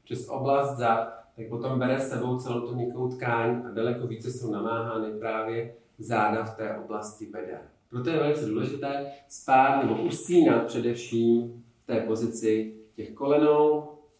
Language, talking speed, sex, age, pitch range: Czech, 150 wpm, male, 40-59, 115-145 Hz